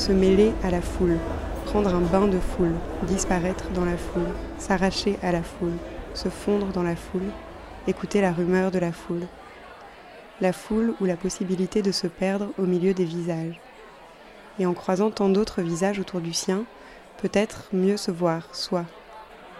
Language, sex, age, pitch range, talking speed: French, female, 20-39, 180-200 Hz, 170 wpm